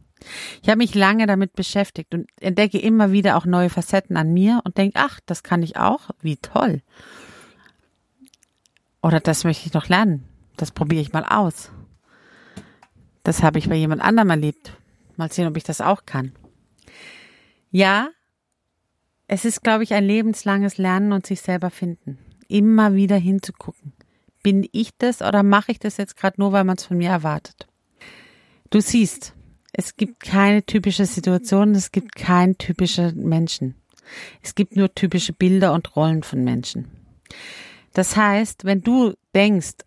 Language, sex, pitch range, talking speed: German, female, 165-205 Hz, 160 wpm